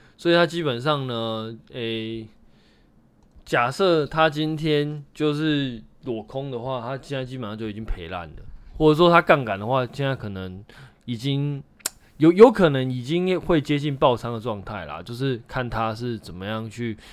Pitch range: 105-150 Hz